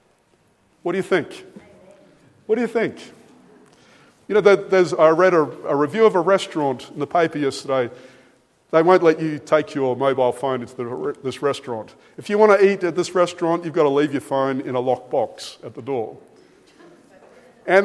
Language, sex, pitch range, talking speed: English, male, 145-210 Hz, 185 wpm